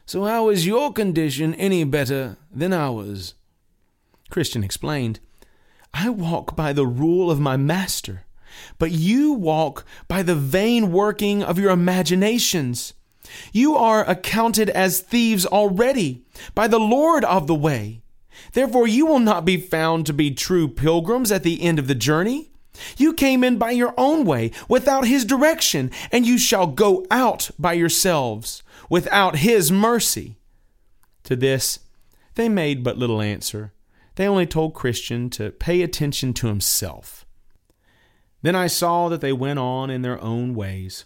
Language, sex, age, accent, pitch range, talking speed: English, male, 30-49, American, 120-195 Hz, 150 wpm